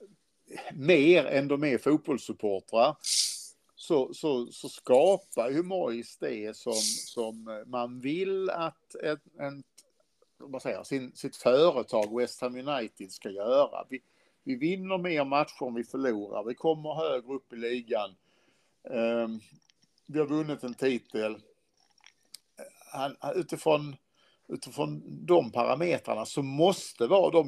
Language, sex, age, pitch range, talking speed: Swedish, male, 60-79, 120-155 Hz, 120 wpm